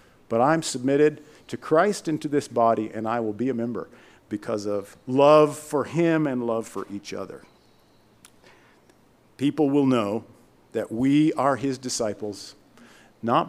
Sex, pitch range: male, 115-150 Hz